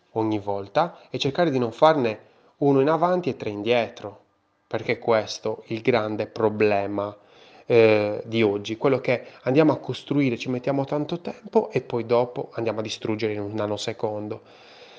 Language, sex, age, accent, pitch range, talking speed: Italian, male, 20-39, native, 115-165 Hz, 160 wpm